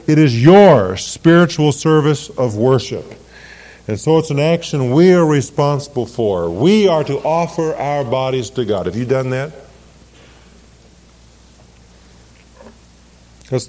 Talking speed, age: 125 wpm, 50-69